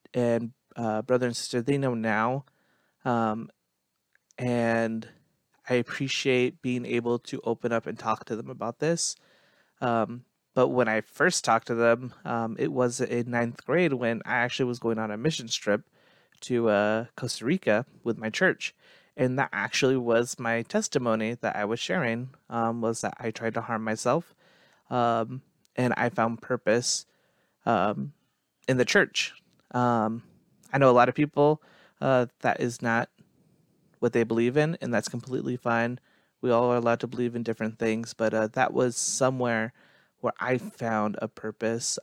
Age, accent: 30-49, American